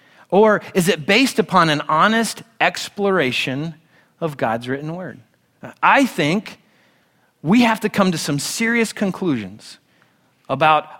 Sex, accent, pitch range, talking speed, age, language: male, American, 150-205 Hz, 125 wpm, 30-49, English